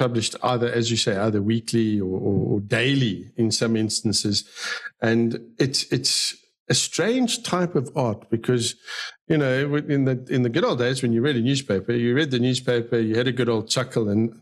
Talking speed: 200 wpm